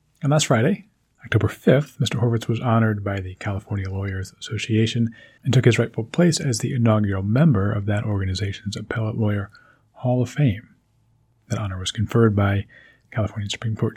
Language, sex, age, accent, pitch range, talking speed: English, male, 40-59, American, 105-130 Hz, 170 wpm